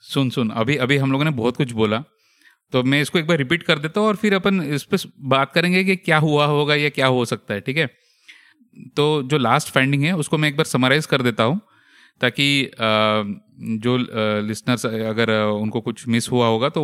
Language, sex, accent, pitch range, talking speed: Hindi, male, native, 120-160 Hz, 215 wpm